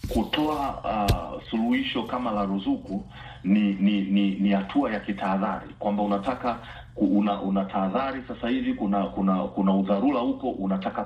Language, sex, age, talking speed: Swahili, male, 40-59, 125 wpm